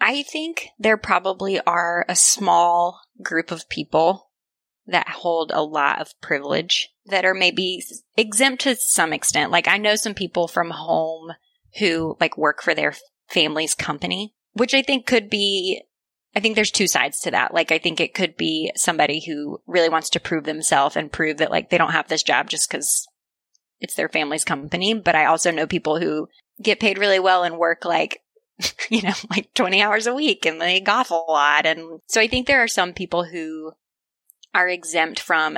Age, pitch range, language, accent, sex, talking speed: 20-39, 160-210 Hz, English, American, female, 190 wpm